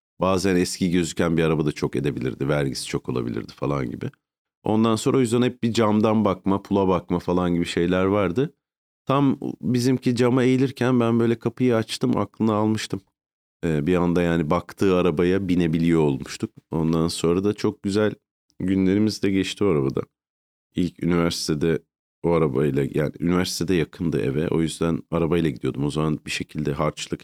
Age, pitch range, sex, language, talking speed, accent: 40-59, 80-105 Hz, male, Turkish, 155 wpm, native